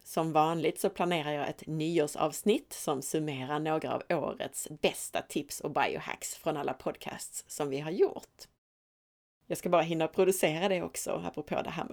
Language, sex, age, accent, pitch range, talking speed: Swedish, female, 30-49, native, 155-190 Hz, 175 wpm